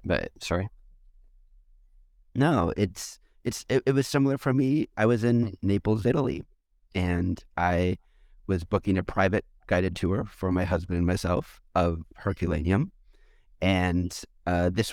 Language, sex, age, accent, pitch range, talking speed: English, male, 30-49, American, 90-105 Hz, 135 wpm